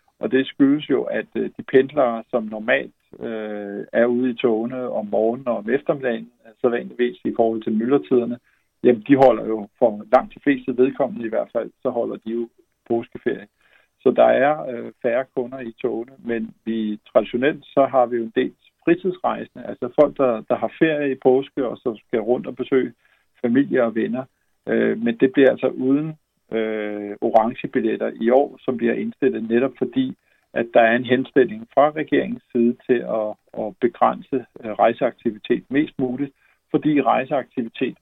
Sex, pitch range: male, 110-135 Hz